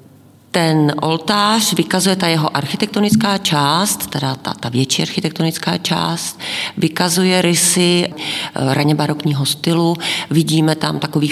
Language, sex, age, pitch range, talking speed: Czech, female, 40-59, 140-170 Hz, 110 wpm